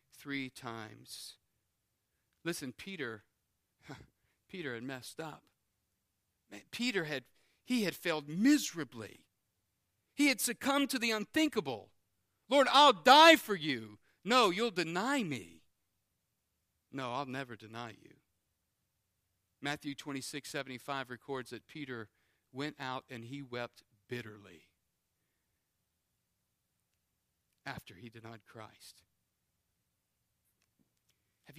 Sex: male